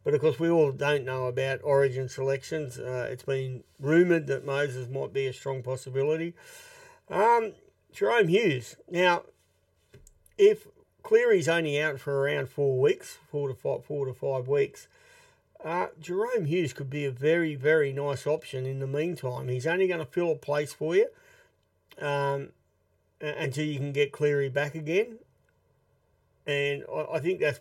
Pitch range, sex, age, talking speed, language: 135-165 Hz, male, 50-69, 160 wpm, English